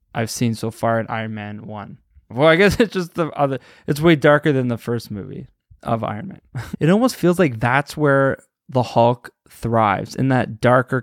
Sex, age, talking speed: male, 20-39, 200 wpm